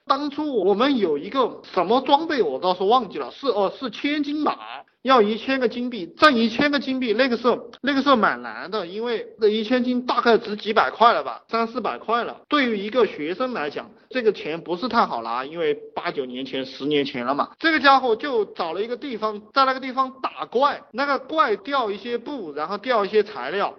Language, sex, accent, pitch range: Chinese, male, native, 170-280 Hz